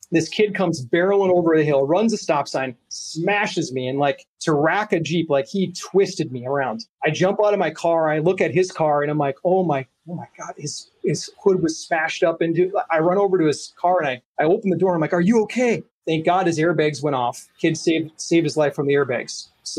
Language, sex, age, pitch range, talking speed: English, male, 30-49, 150-185 Hz, 250 wpm